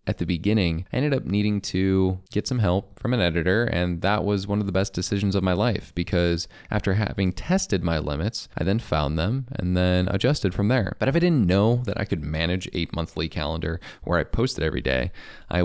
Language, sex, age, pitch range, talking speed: English, male, 20-39, 85-105 Hz, 220 wpm